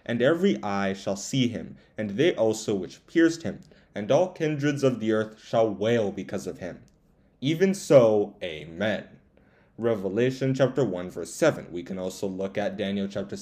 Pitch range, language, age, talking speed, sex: 105-150 Hz, English, 20-39, 170 wpm, male